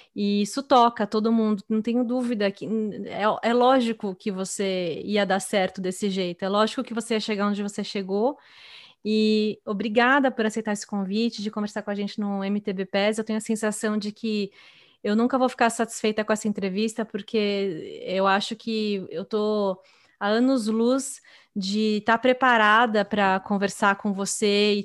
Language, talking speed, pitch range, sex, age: Portuguese, 175 wpm, 205-230 Hz, female, 20-39